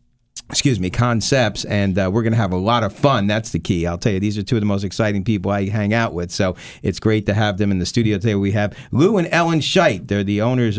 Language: English